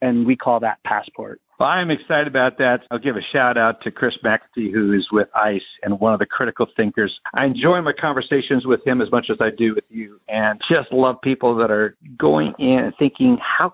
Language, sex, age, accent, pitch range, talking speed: English, male, 60-79, American, 115-150 Hz, 225 wpm